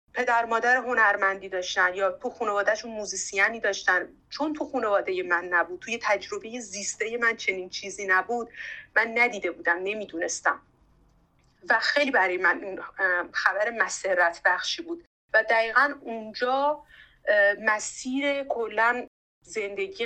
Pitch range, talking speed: 195-250 Hz, 115 wpm